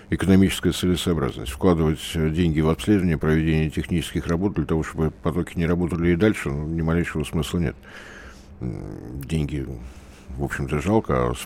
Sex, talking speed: male, 135 wpm